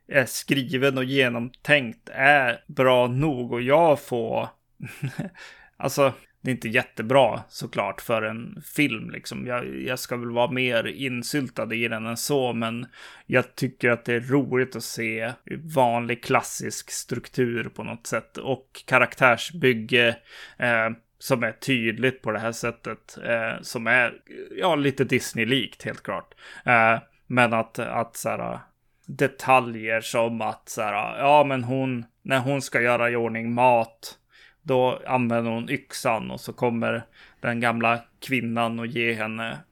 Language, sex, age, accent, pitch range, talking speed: Swedish, male, 20-39, native, 115-135 Hz, 145 wpm